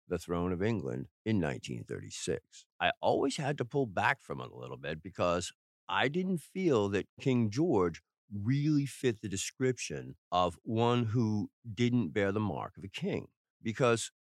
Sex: male